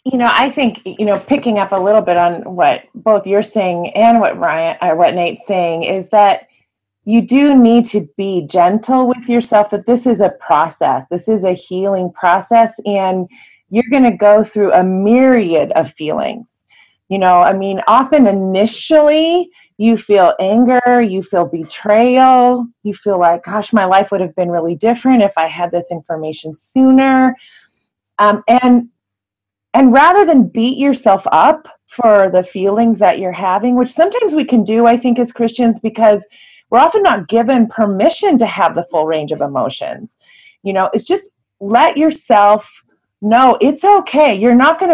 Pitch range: 190-250 Hz